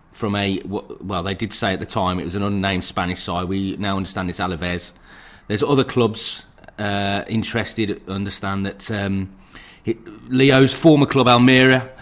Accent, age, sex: British, 30-49, male